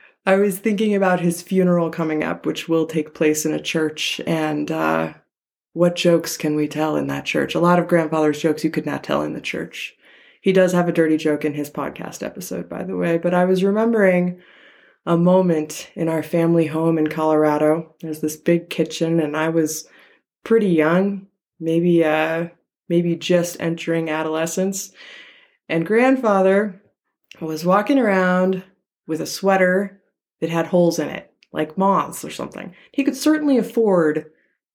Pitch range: 155-190 Hz